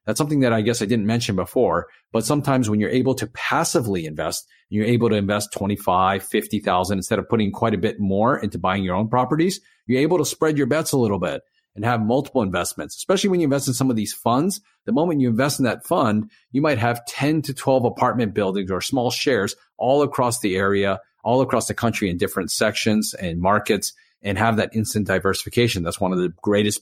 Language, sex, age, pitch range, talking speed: English, male, 40-59, 105-135 Hz, 220 wpm